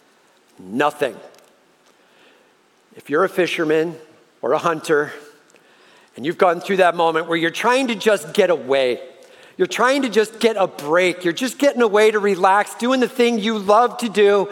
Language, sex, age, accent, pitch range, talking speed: English, male, 50-69, American, 205-250 Hz, 170 wpm